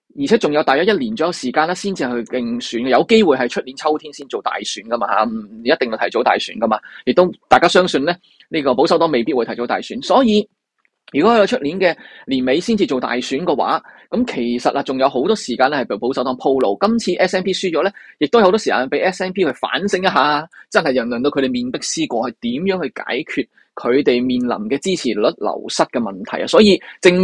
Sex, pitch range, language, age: male, 130-200 Hz, Chinese, 20-39